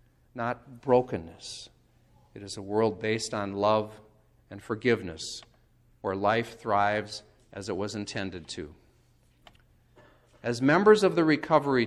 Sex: male